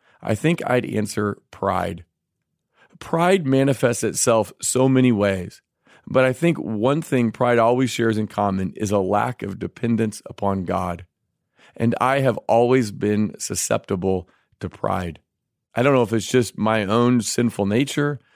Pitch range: 100-120 Hz